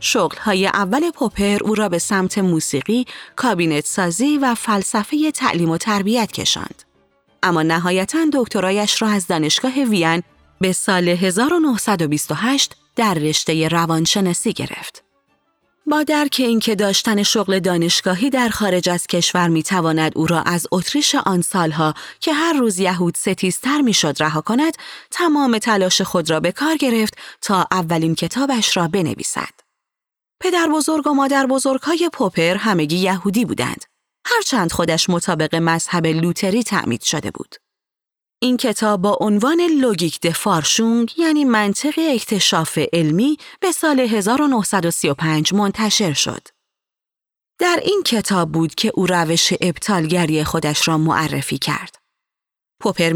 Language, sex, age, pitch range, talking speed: Persian, female, 30-49, 170-255 Hz, 125 wpm